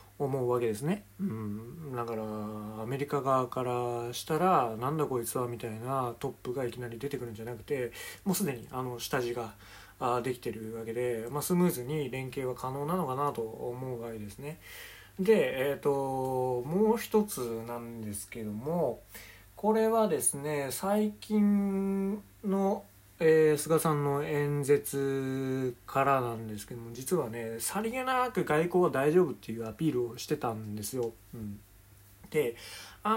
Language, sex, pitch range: Japanese, male, 120-185 Hz